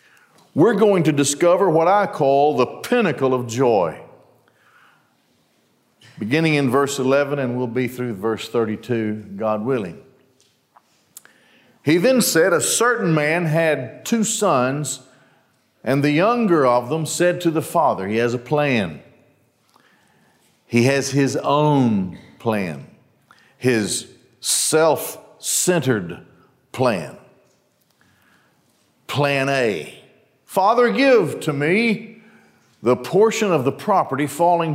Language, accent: English, American